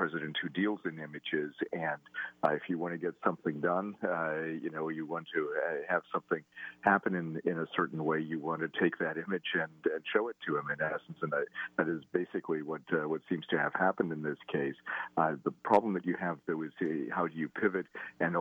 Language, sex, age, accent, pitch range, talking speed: English, male, 50-69, American, 75-85 Hz, 235 wpm